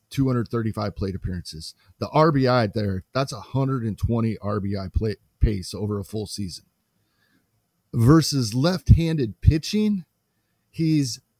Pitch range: 105-135 Hz